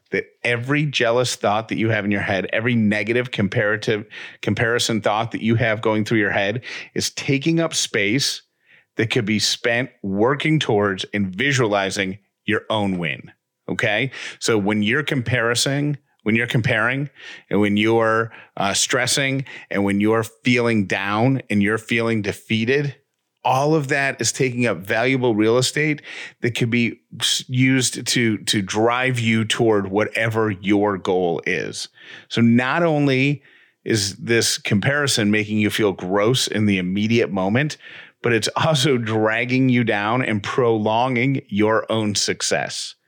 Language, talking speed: English, 150 wpm